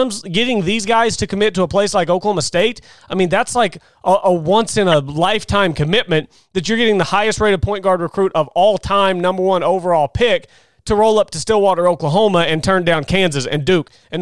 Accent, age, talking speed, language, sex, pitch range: American, 30-49, 205 wpm, English, male, 160-205 Hz